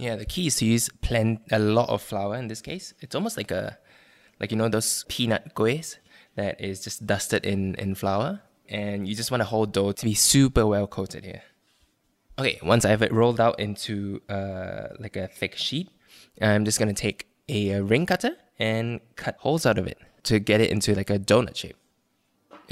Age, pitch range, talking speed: 10-29, 105-120 Hz, 210 wpm